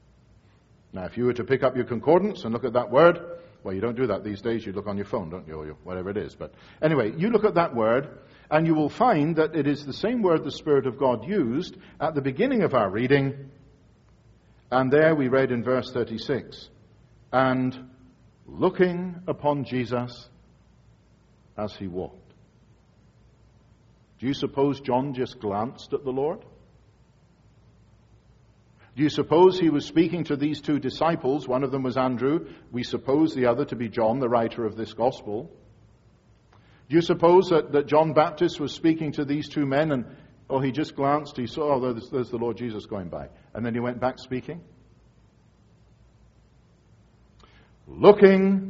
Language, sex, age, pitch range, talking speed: English, male, 50-69, 115-150 Hz, 180 wpm